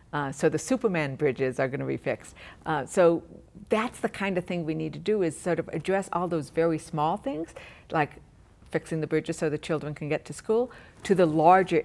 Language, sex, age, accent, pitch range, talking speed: English, female, 60-79, American, 155-185 Hz, 225 wpm